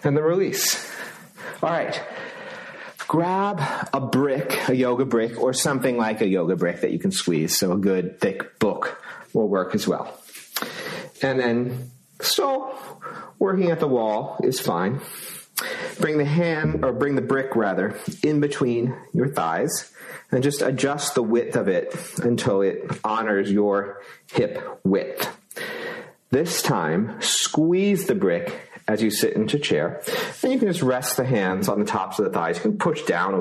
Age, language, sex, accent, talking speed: 40-59, English, male, American, 165 wpm